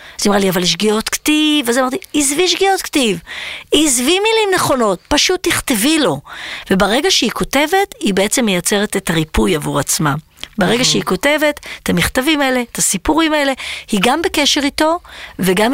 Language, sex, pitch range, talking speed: Hebrew, female, 190-295 Hz, 160 wpm